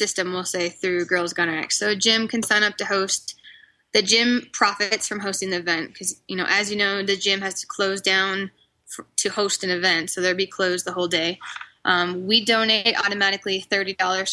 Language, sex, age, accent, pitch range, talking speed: English, female, 10-29, American, 185-205 Hz, 210 wpm